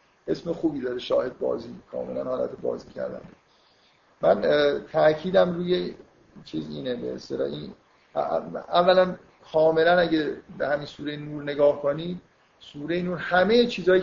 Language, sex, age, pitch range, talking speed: Persian, male, 50-69, 135-175 Hz, 125 wpm